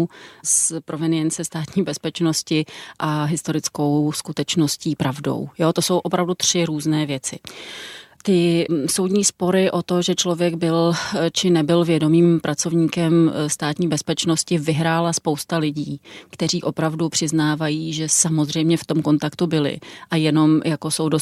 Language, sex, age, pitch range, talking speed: Czech, female, 30-49, 155-175 Hz, 125 wpm